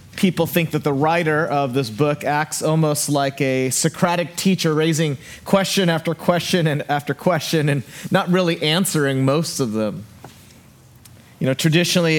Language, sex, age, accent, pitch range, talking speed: English, male, 30-49, American, 140-170 Hz, 155 wpm